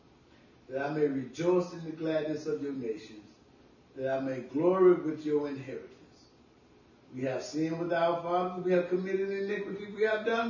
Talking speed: 170 wpm